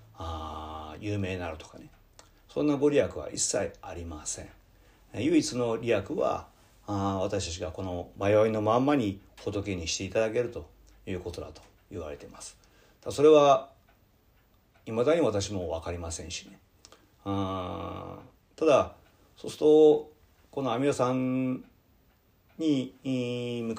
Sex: male